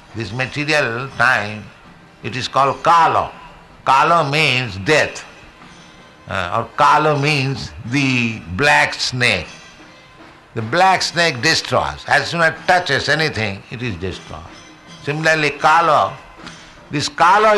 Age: 60-79